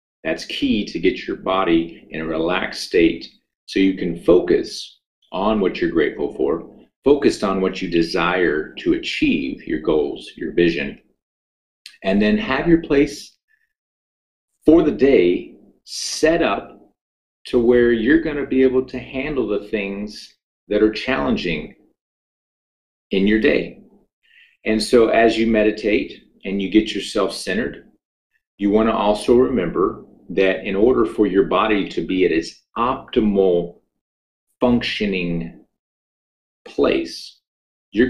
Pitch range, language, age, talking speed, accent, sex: 90-130 Hz, English, 40-59, 135 wpm, American, male